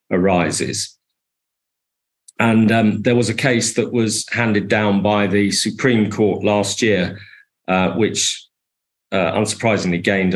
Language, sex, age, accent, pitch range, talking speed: English, male, 50-69, British, 95-110 Hz, 125 wpm